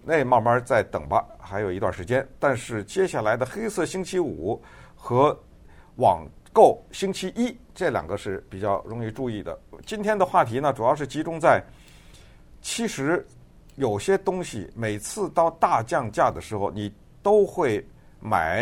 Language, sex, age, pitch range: Chinese, male, 50-69, 105-165 Hz